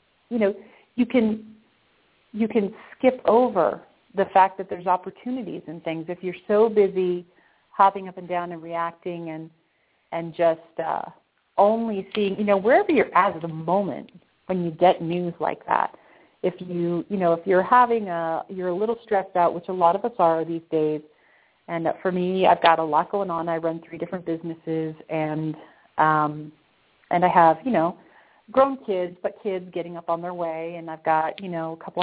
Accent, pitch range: American, 165-195 Hz